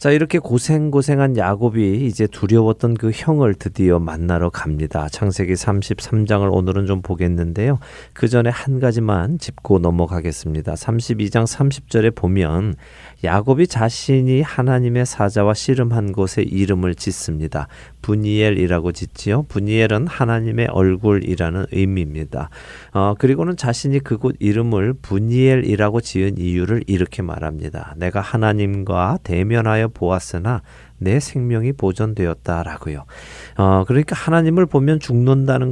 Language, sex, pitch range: Korean, male, 90-125 Hz